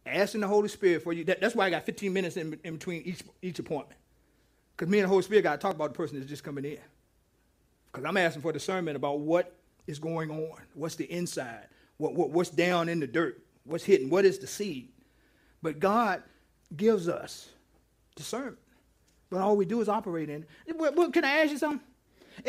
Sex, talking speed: male, 210 wpm